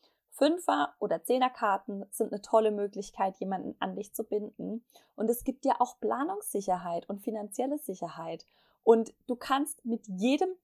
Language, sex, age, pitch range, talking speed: German, female, 20-39, 215-270 Hz, 160 wpm